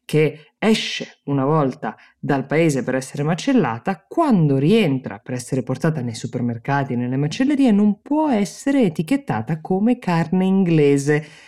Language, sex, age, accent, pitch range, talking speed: Italian, female, 20-39, native, 130-155 Hz, 135 wpm